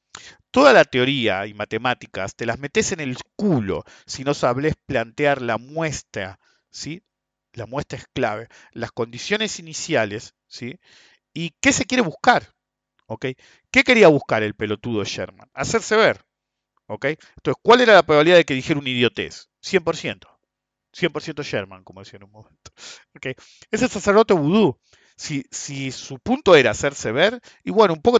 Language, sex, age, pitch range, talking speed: English, male, 50-69, 115-165 Hz, 155 wpm